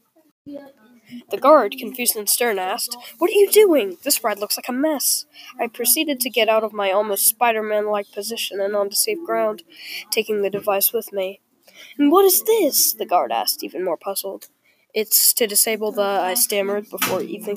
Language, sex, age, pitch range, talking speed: English, female, 10-29, 205-310 Hz, 180 wpm